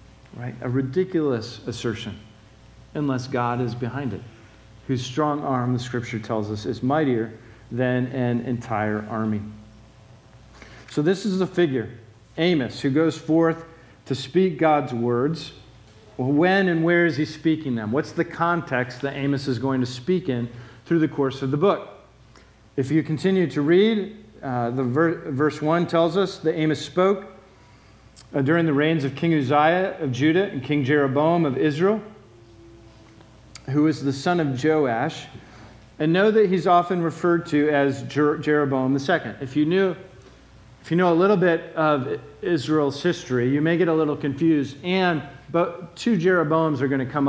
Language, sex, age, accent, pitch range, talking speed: English, male, 40-59, American, 125-165 Hz, 165 wpm